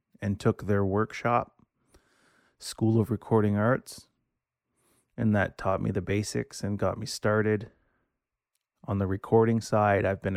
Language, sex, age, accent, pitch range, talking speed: English, male, 30-49, American, 100-115 Hz, 140 wpm